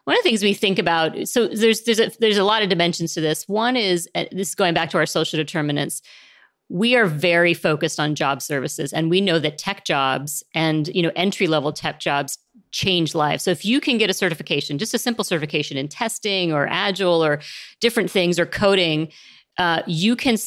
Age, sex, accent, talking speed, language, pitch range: 40-59, female, American, 200 wpm, English, 155-185 Hz